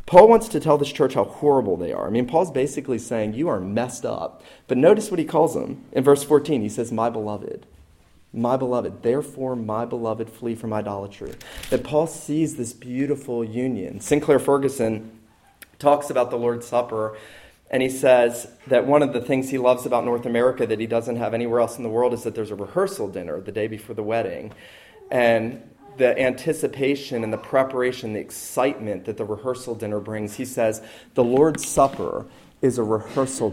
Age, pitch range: 40-59, 110-140 Hz